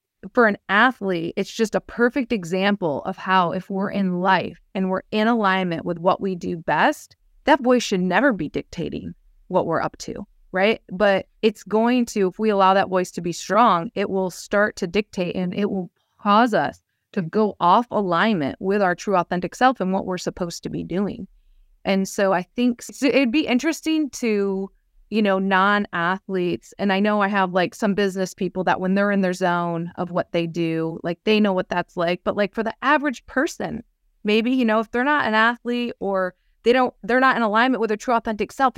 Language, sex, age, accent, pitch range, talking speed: English, female, 20-39, American, 185-230 Hz, 205 wpm